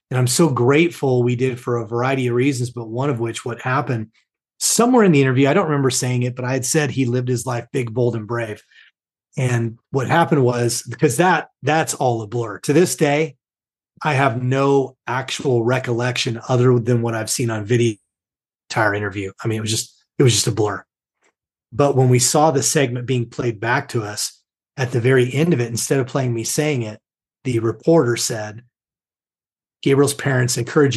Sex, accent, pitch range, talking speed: male, American, 115-140 Hz, 200 wpm